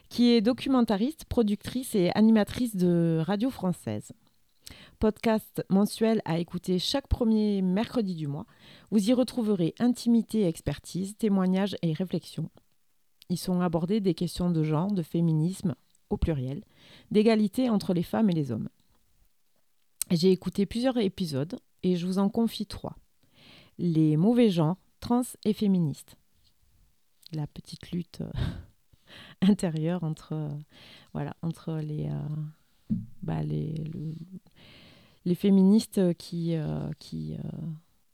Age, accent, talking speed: 30-49, French, 125 wpm